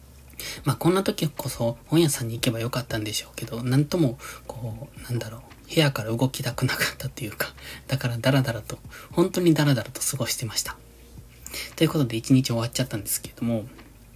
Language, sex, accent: Japanese, male, native